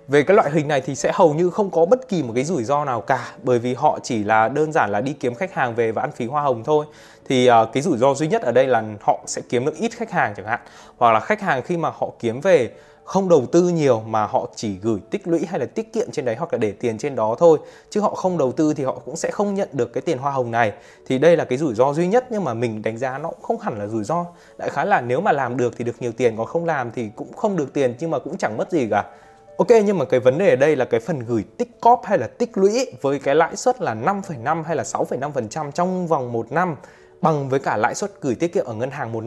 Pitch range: 125-185 Hz